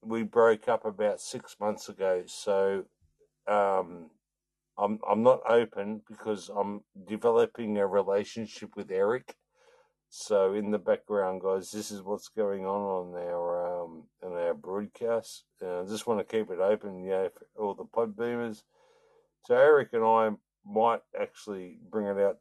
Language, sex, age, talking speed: English, male, 60-79, 160 wpm